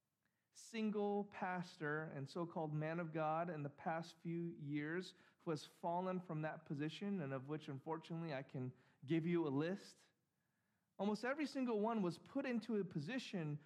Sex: male